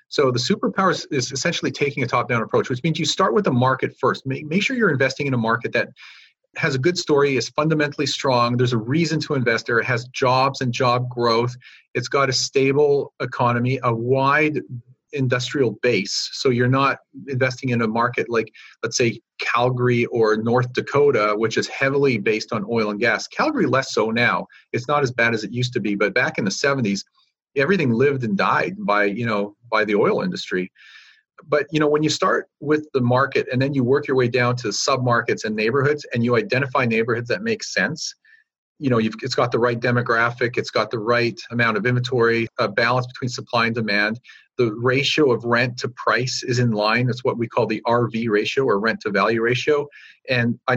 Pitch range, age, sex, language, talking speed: 120-140 Hz, 40-59, male, English, 210 wpm